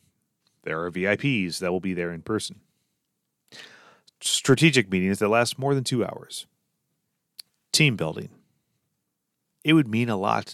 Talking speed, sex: 135 wpm, male